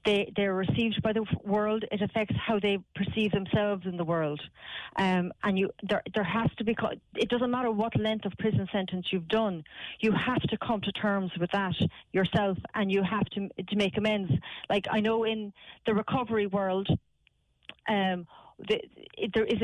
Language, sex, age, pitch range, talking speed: English, female, 40-59, 185-215 Hz, 185 wpm